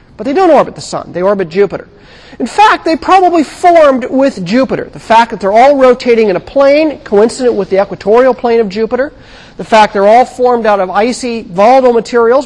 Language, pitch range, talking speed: English, 190-255 Hz, 200 wpm